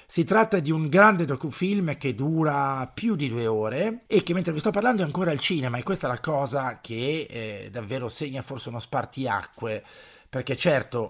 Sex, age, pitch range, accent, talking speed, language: male, 50-69, 110-145 Hz, native, 195 wpm, Italian